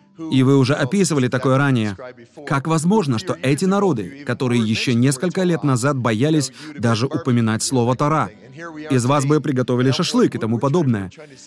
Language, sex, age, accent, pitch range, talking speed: Russian, male, 30-49, native, 125-155 Hz, 150 wpm